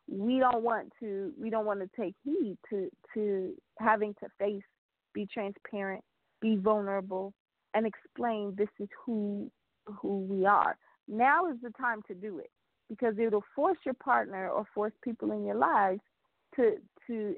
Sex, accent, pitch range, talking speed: female, American, 200-235 Hz, 160 wpm